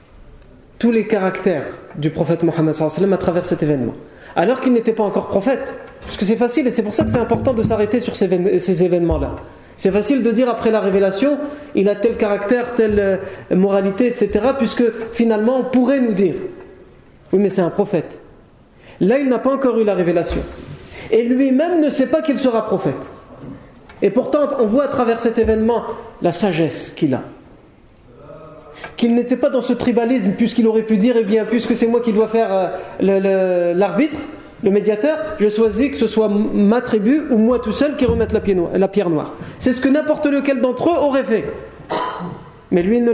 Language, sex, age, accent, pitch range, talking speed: French, male, 40-59, French, 200-250 Hz, 200 wpm